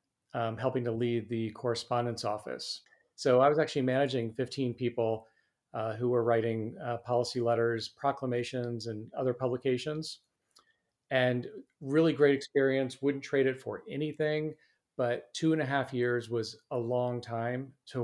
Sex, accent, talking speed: male, American, 150 wpm